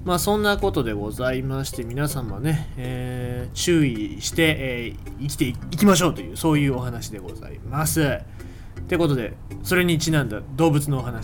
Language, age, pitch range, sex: Japanese, 20-39, 110-160 Hz, male